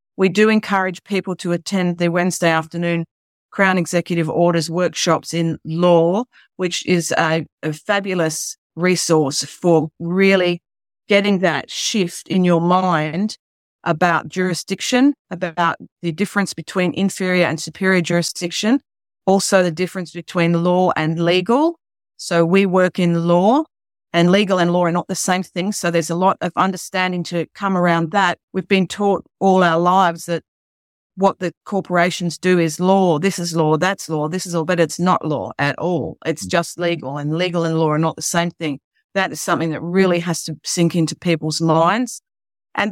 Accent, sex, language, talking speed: Australian, female, English, 170 wpm